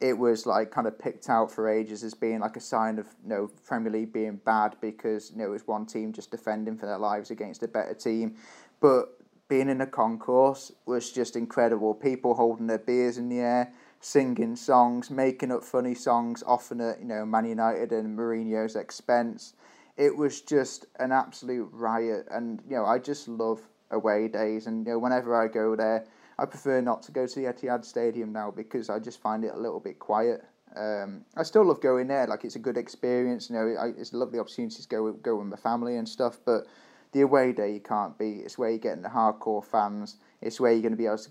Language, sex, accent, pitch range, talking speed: English, male, British, 110-125 Hz, 220 wpm